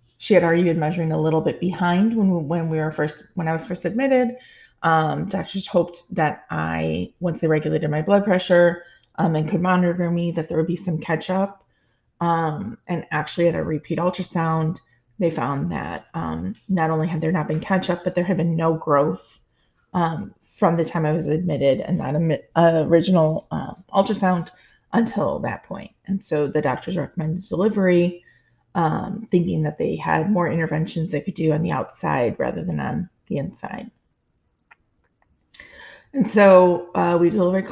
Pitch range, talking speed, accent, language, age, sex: 155-185 Hz, 180 wpm, American, English, 30-49, female